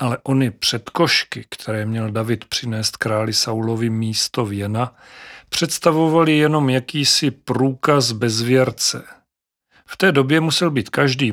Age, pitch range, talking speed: 40-59, 115-145 Hz, 120 wpm